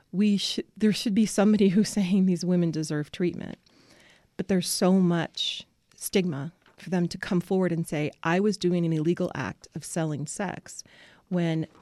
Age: 30-49